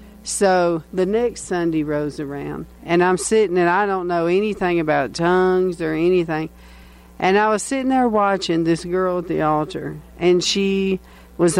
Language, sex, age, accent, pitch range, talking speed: English, female, 50-69, American, 165-200 Hz, 165 wpm